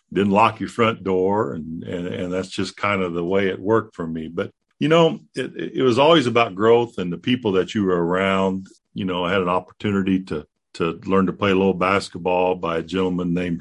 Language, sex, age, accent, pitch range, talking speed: English, male, 50-69, American, 90-110 Hz, 230 wpm